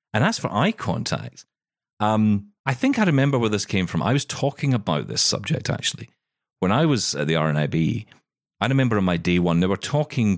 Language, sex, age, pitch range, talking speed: English, male, 40-59, 85-120 Hz, 210 wpm